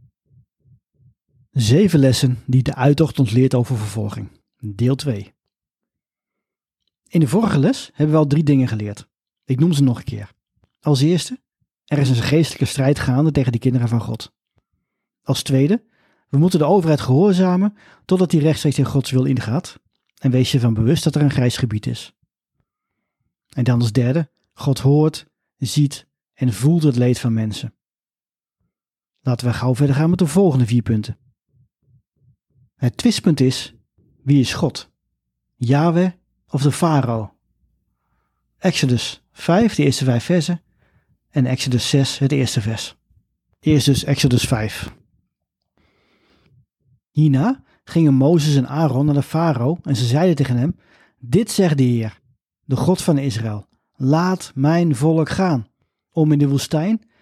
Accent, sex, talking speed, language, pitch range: Dutch, male, 150 wpm, Dutch, 125-160 Hz